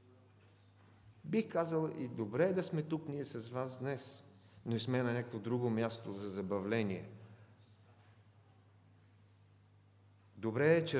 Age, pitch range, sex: 50-69, 100-125 Hz, male